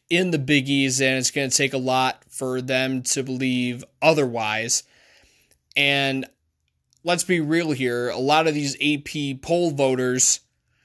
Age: 20-39